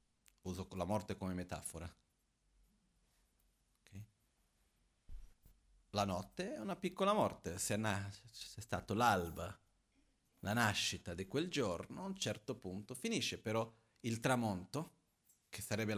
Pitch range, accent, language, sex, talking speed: 95-125 Hz, native, Italian, male, 115 wpm